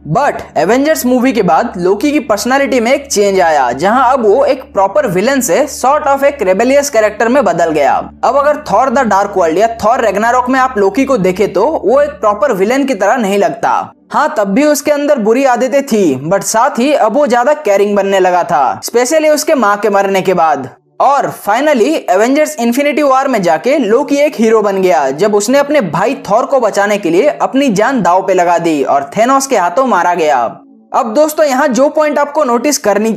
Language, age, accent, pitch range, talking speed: Hindi, 20-39, native, 200-290 Hz, 210 wpm